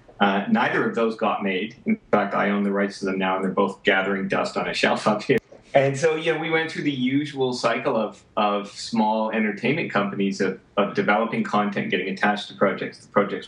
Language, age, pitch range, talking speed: English, 40-59, 95-120 Hz, 220 wpm